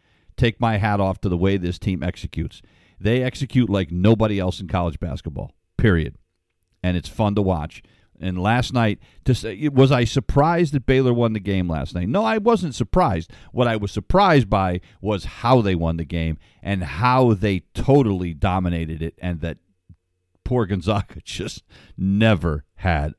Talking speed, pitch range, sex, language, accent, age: 170 wpm, 90-115 Hz, male, English, American, 50-69